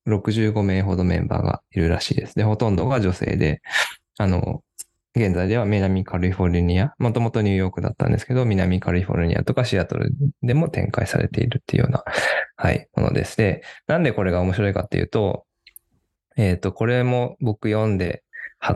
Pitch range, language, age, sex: 90-115 Hz, Japanese, 20-39, male